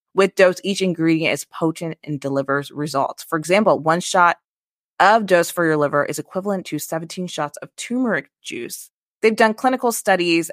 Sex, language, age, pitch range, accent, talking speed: female, English, 20-39, 150-190 Hz, American, 170 wpm